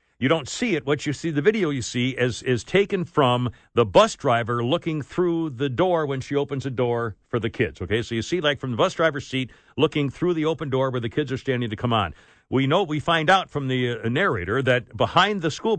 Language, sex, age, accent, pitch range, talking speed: English, male, 60-79, American, 130-195 Hz, 250 wpm